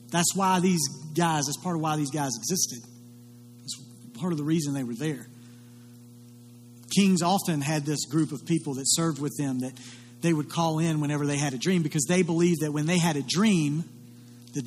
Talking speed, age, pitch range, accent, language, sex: 205 wpm, 40-59, 120-165 Hz, American, English, male